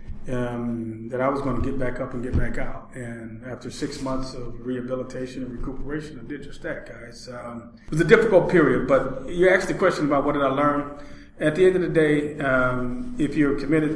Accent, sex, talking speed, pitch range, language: American, male, 225 wpm, 125-140 Hz, English